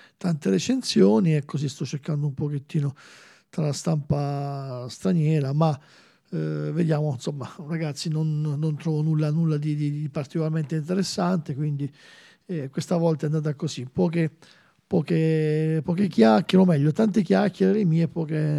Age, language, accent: 50-69, Italian, native